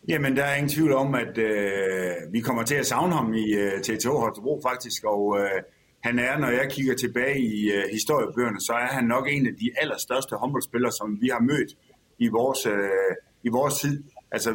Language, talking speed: Danish, 205 wpm